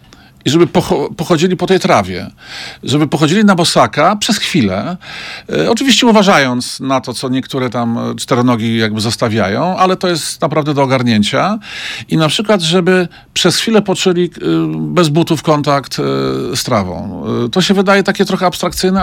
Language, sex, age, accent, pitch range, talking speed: Polish, male, 50-69, native, 120-175 Hz, 145 wpm